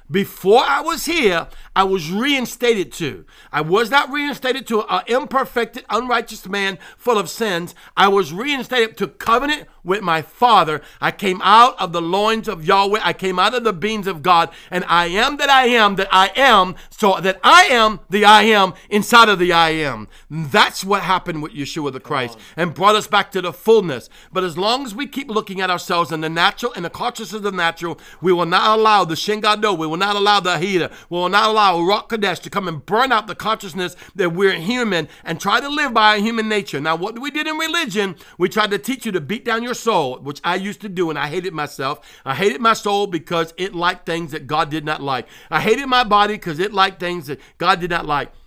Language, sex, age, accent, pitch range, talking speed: English, male, 50-69, American, 170-220 Hz, 230 wpm